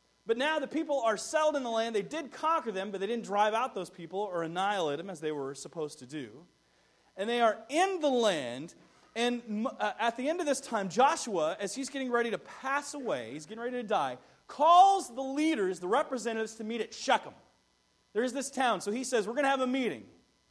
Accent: American